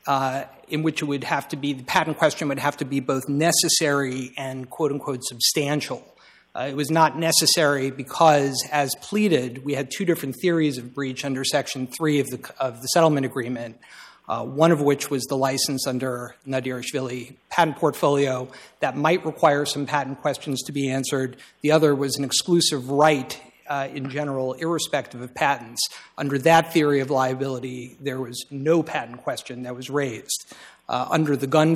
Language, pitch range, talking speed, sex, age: English, 130-155 Hz, 175 wpm, male, 50-69